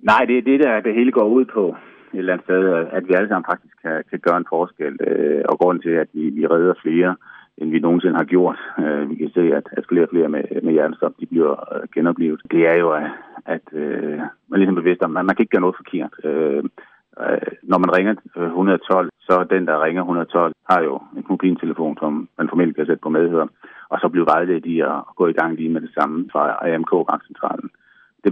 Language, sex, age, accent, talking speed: Danish, male, 30-49, native, 225 wpm